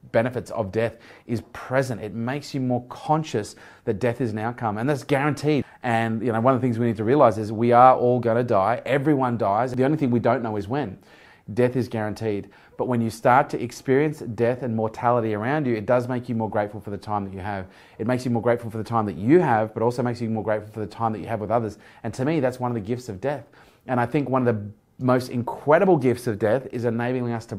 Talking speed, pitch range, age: 265 wpm, 115-130 Hz, 30-49